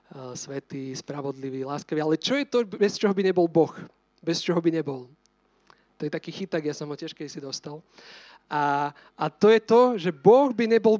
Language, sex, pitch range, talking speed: Slovak, male, 170-215 Hz, 185 wpm